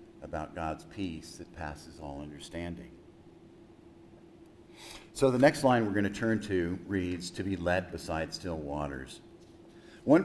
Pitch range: 90-115 Hz